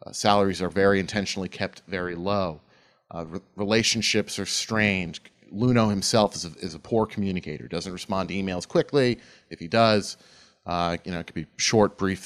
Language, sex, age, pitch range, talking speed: English, male, 30-49, 95-135 Hz, 180 wpm